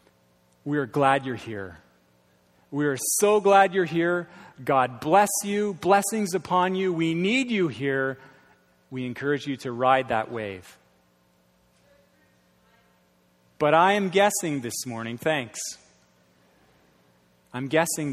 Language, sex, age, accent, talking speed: English, male, 30-49, American, 120 wpm